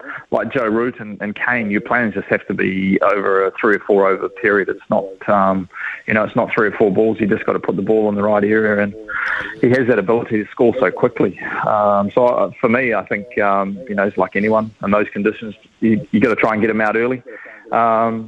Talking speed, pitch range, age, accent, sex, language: 245 wpm, 105-115 Hz, 20-39, Australian, male, English